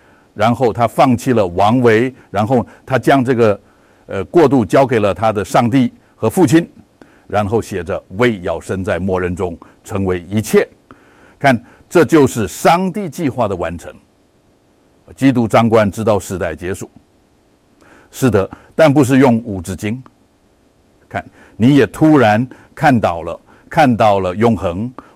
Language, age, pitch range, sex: Dutch, 60-79, 105-125 Hz, male